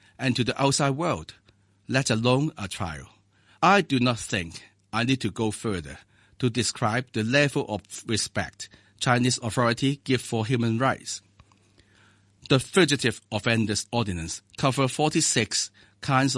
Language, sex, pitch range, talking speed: English, male, 100-130 Hz, 135 wpm